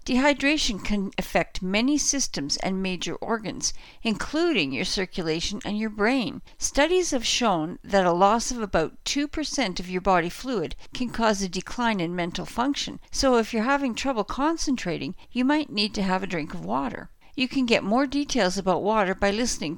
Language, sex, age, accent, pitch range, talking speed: English, female, 60-79, American, 190-265 Hz, 175 wpm